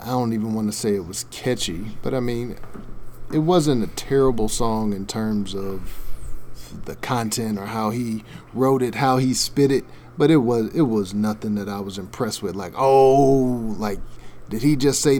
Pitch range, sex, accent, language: 105-125 Hz, male, American, English